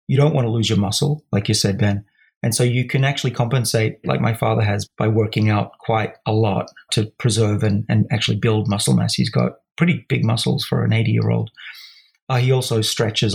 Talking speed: 210 wpm